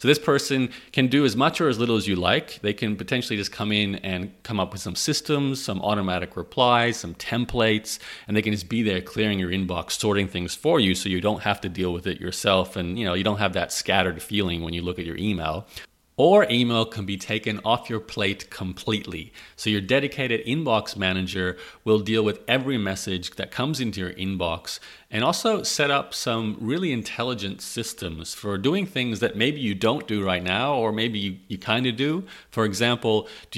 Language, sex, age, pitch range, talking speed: English, male, 30-49, 95-120 Hz, 210 wpm